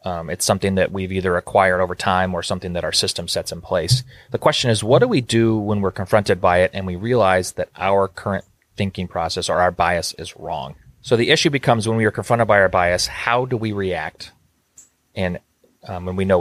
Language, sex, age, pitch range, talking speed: English, male, 30-49, 95-115 Hz, 225 wpm